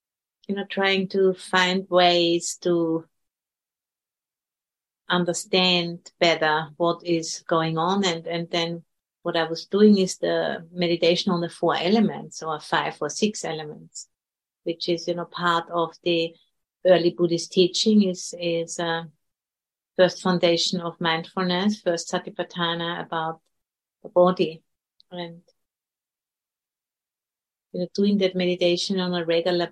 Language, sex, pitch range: English, female, 165-180 Hz